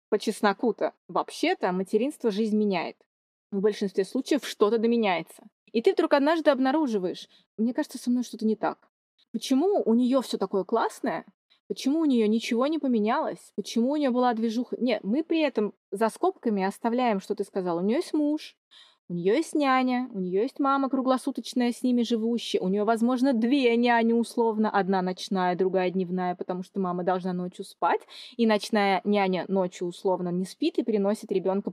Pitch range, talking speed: 190-235 Hz, 180 wpm